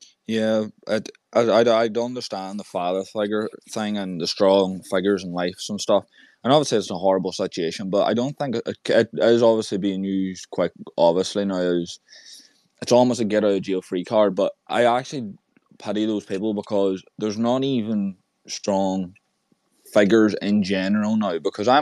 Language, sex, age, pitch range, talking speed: English, male, 20-39, 95-110 Hz, 180 wpm